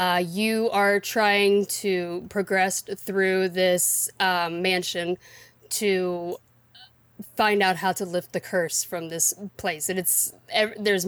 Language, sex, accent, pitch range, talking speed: English, female, American, 175-215 Hz, 130 wpm